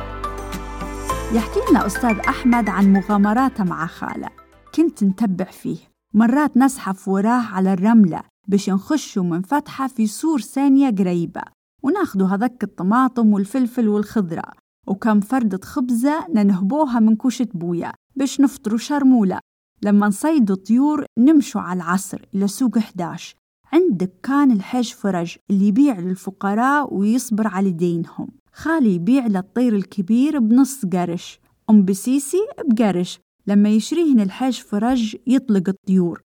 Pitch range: 195-265 Hz